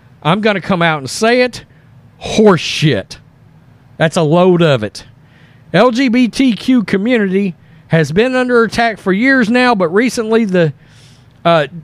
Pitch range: 155-225 Hz